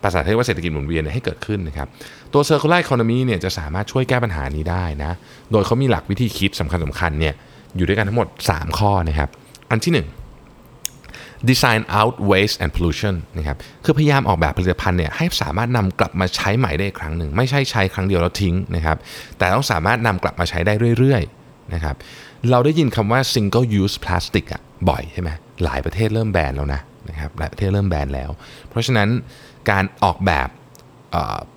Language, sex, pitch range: Thai, male, 85-120 Hz